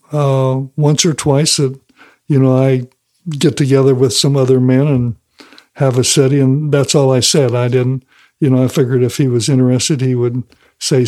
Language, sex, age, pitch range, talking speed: English, male, 60-79, 130-145 Hz, 195 wpm